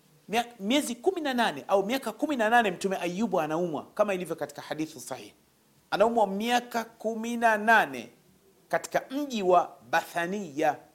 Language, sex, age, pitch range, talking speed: Swahili, male, 40-59, 160-225 Hz, 110 wpm